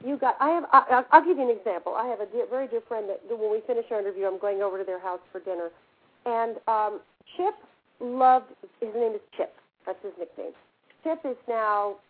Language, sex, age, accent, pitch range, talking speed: English, female, 50-69, American, 200-280 Hz, 215 wpm